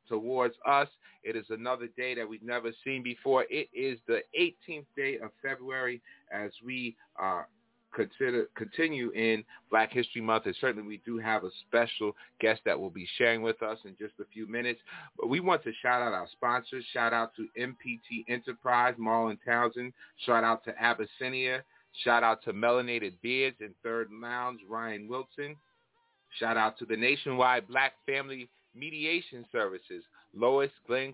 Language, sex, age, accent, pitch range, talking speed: English, male, 30-49, American, 120-145 Hz, 165 wpm